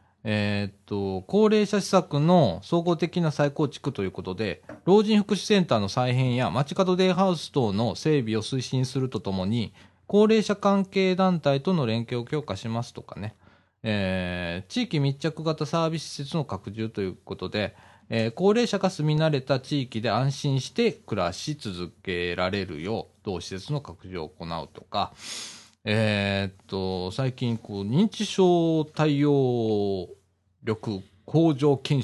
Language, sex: Japanese, male